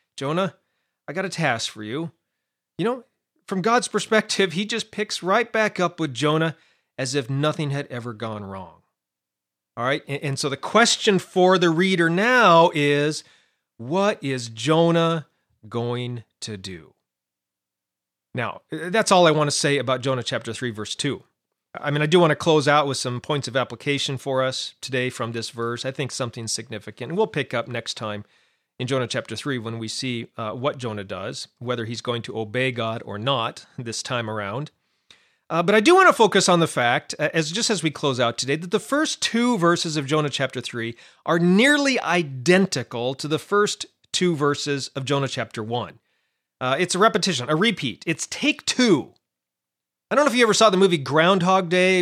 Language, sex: English, male